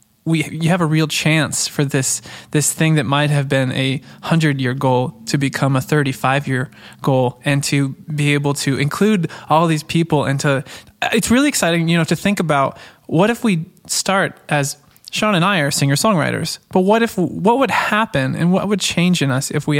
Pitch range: 140-165 Hz